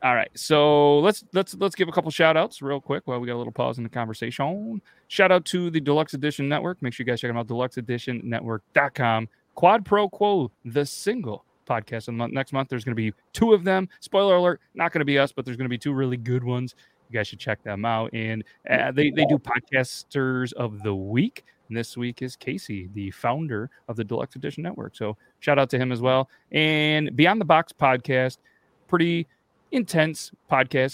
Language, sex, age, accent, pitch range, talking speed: English, male, 30-49, American, 115-150 Hz, 215 wpm